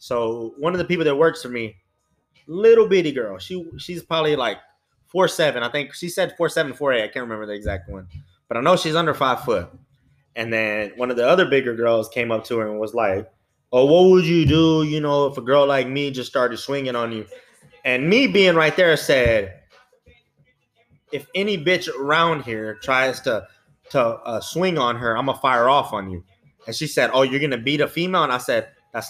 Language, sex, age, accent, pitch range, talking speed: English, male, 20-39, American, 125-165 Hz, 225 wpm